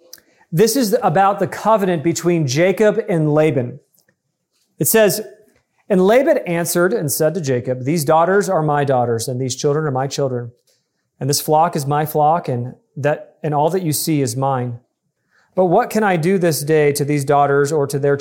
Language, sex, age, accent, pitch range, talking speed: English, male, 40-59, American, 145-185 Hz, 190 wpm